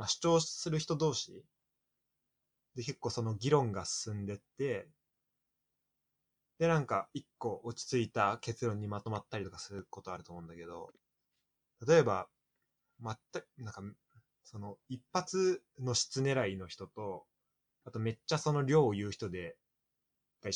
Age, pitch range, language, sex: 20-39, 105-155 Hz, Japanese, male